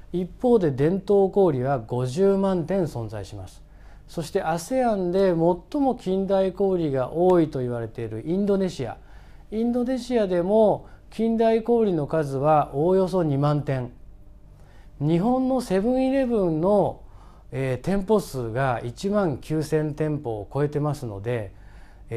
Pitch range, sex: 125-195 Hz, male